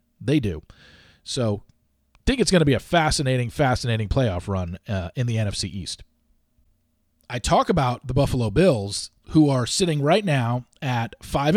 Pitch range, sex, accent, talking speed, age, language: 115-180 Hz, male, American, 165 wpm, 40-59, English